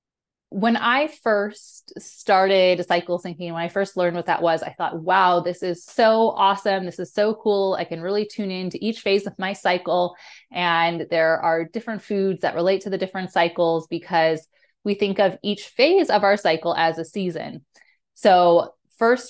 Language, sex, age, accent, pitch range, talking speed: English, female, 20-39, American, 175-210 Hz, 185 wpm